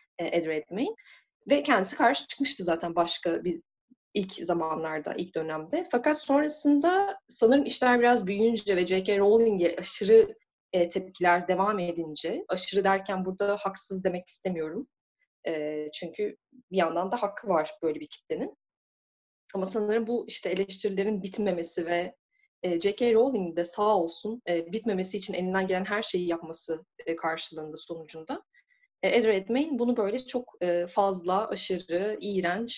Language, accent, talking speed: Turkish, native, 125 wpm